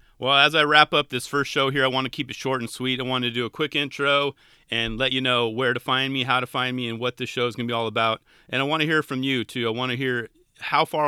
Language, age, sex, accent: English, 30-49, male, American